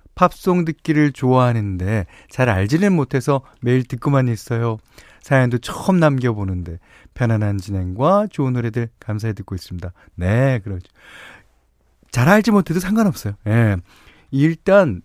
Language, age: Korean, 40-59